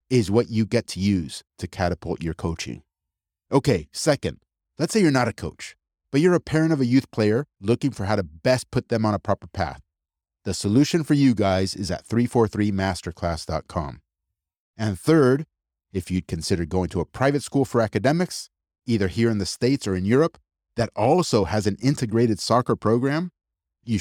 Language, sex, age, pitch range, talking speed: English, male, 30-49, 90-130 Hz, 180 wpm